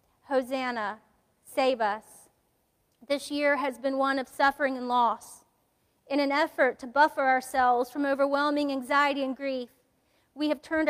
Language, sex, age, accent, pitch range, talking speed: English, female, 40-59, American, 250-280 Hz, 145 wpm